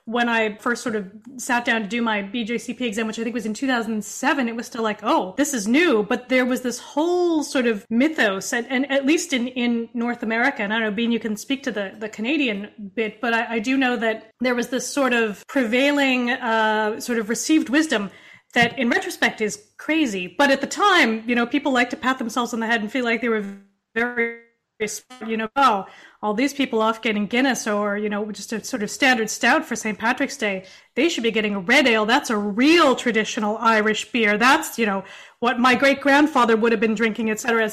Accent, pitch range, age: American, 220-275 Hz, 30-49